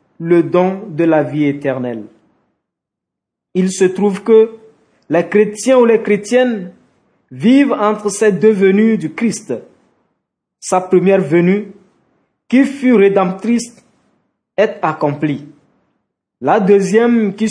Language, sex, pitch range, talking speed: French, male, 180-225 Hz, 115 wpm